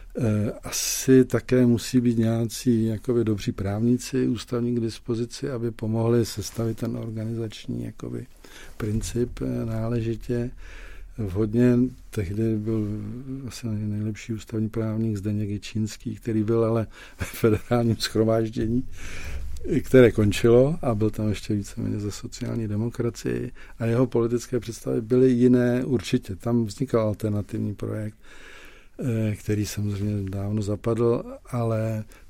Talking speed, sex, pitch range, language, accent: 115 wpm, male, 105-120 Hz, Czech, native